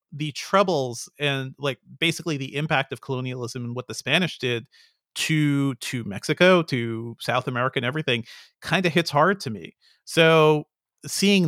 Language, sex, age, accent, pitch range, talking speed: English, male, 40-59, American, 130-155 Hz, 155 wpm